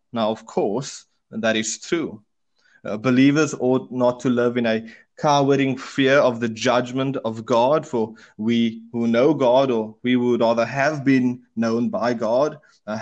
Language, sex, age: English, male, 20-39